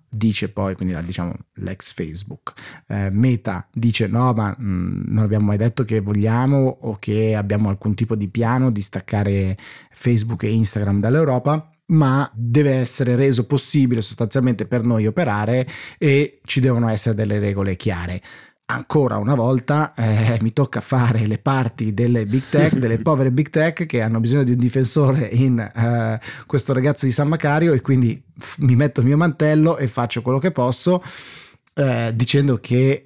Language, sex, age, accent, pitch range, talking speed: Italian, male, 30-49, native, 110-130 Hz, 165 wpm